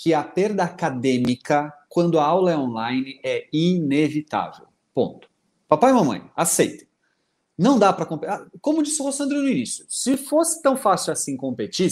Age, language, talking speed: 30-49, Portuguese, 155 wpm